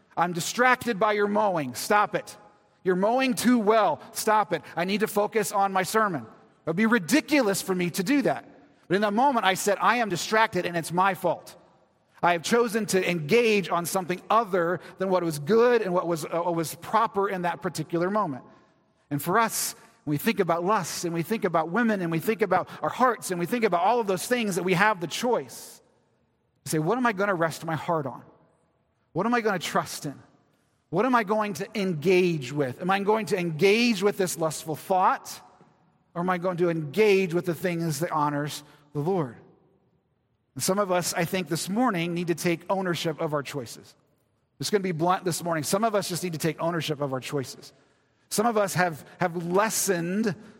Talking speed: 215 wpm